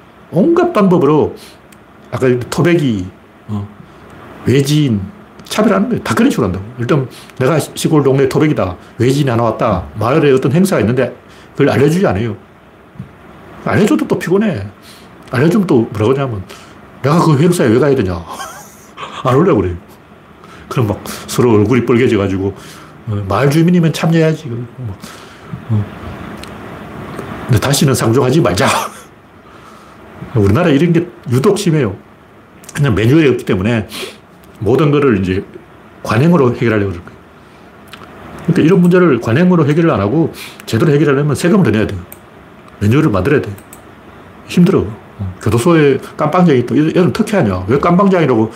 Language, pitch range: Korean, 110-175 Hz